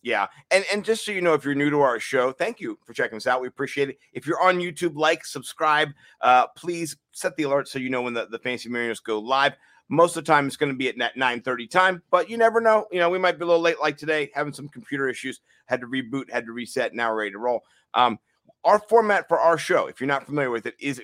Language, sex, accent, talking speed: English, male, American, 275 wpm